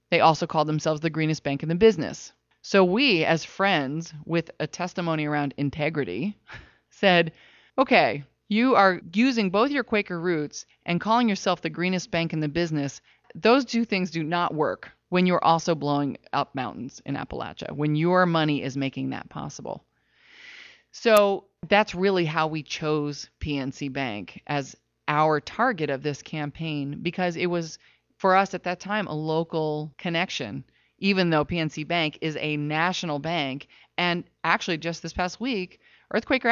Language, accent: English, American